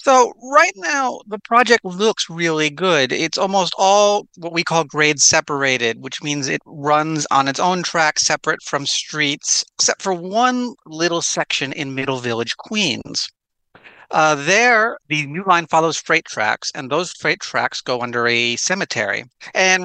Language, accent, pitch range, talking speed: English, American, 130-170 Hz, 160 wpm